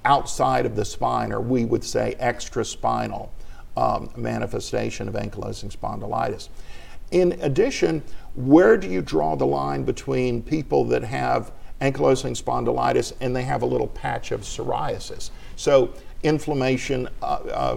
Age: 50-69